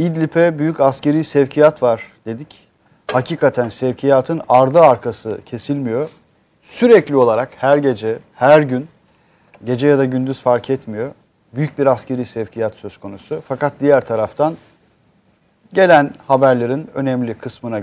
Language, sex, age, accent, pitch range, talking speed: Turkish, male, 40-59, native, 120-155 Hz, 120 wpm